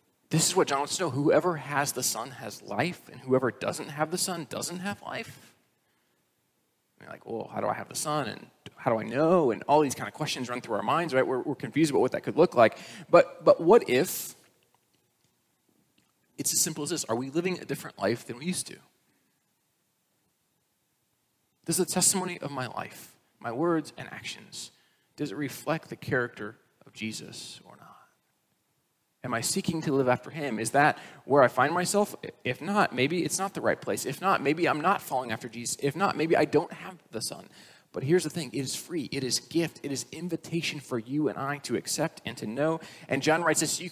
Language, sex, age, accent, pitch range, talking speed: English, male, 30-49, American, 135-175 Hz, 220 wpm